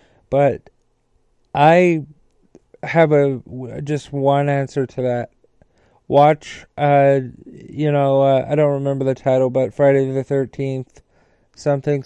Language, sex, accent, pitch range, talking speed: English, male, American, 125-140 Hz, 115 wpm